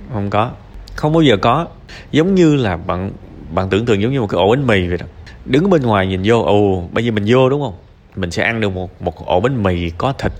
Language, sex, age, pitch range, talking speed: Vietnamese, male, 20-39, 95-125 Hz, 260 wpm